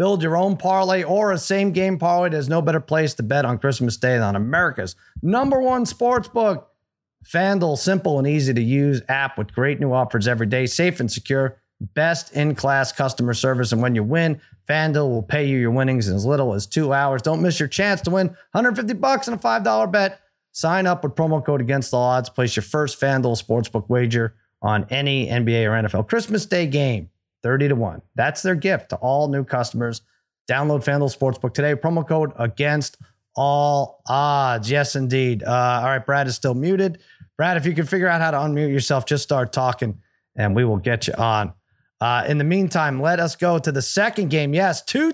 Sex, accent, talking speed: male, American, 200 wpm